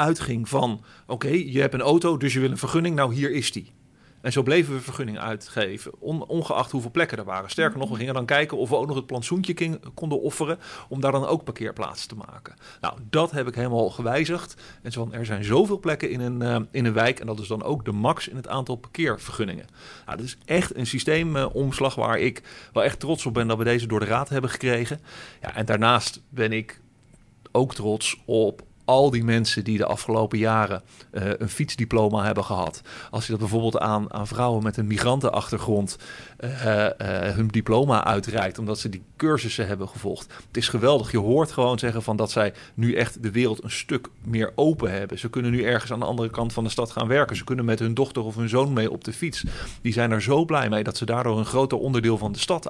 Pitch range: 110-135 Hz